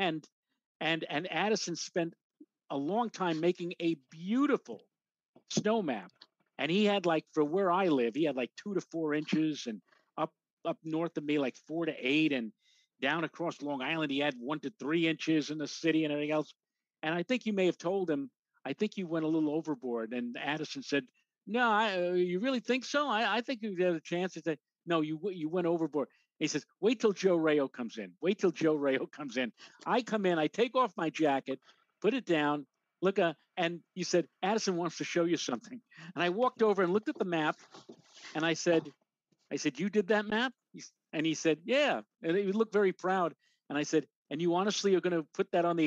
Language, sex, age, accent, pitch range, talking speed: English, male, 50-69, American, 155-215 Hz, 220 wpm